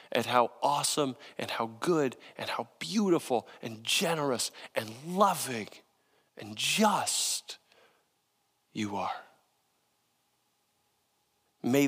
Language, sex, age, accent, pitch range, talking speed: English, male, 40-59, American, 120-175 Hz, 90 wpm